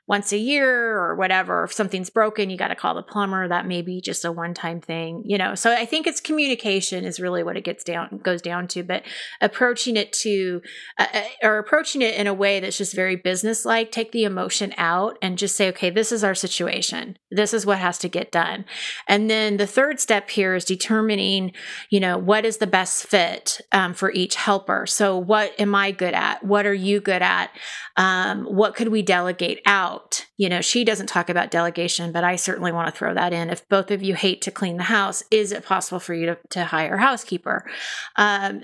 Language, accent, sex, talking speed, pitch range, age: English, American, female, 220 wpm, 180-215 Hz, 30-49